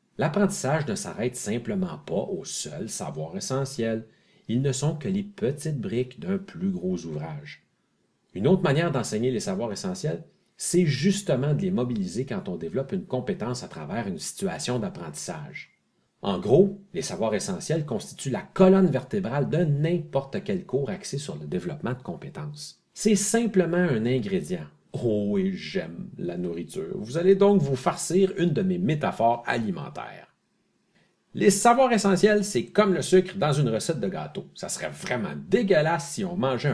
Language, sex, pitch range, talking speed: French, male, 145-195 Hz, 160 wpm